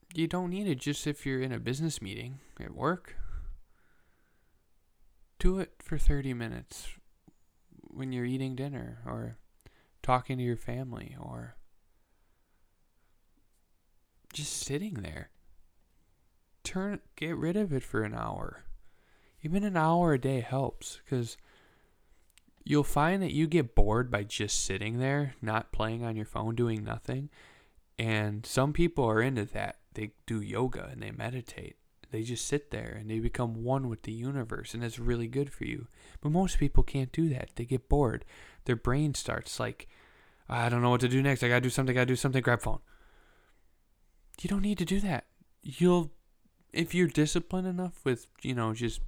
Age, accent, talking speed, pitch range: 10-29, American, 170 wpm, 110-145 Hz